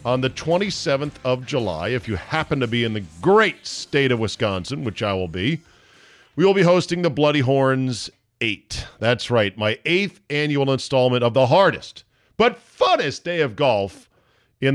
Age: 50-69